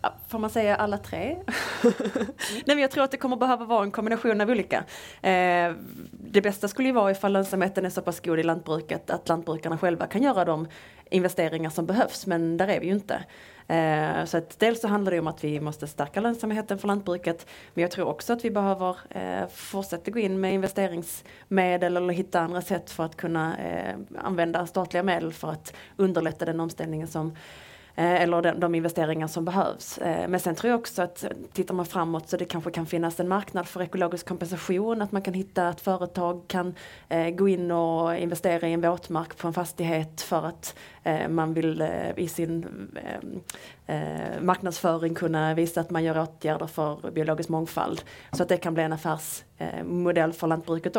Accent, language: Norwegian, Swedish